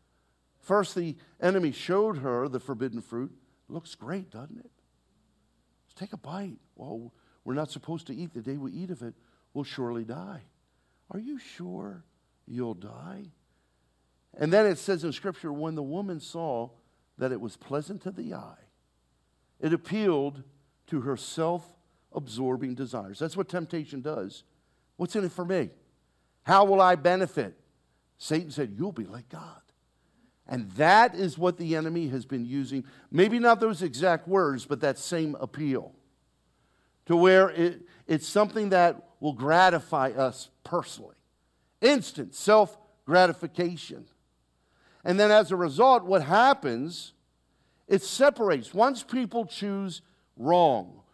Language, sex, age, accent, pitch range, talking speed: English, male, 50-69, American, 130-190 Hz, 140 wpm